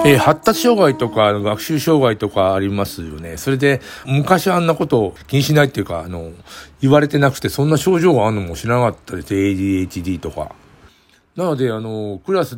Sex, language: male, Japanese